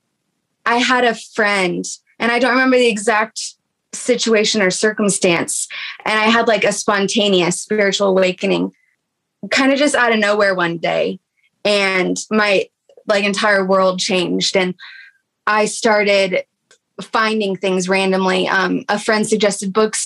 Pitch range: 185-225 Hz